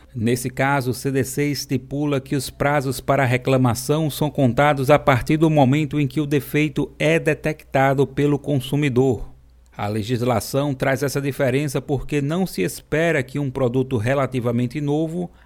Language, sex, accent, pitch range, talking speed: Portuguese, male, Brazilian, 130-150 Hz, 150 wpm